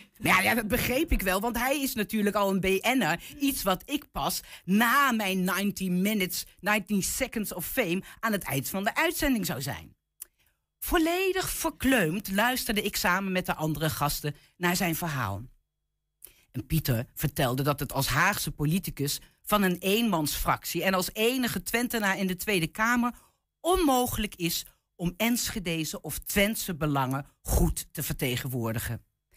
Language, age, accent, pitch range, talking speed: Dutch, 50-69, Dutch, 150-230 Hz, 150 wpm